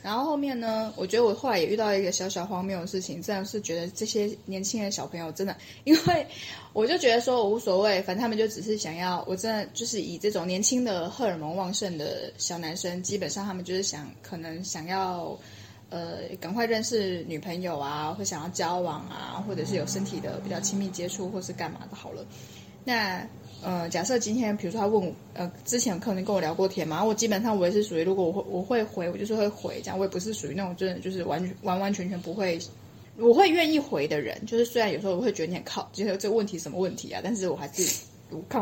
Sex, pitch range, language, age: female, 175-220 Hz, Chinese, 20-39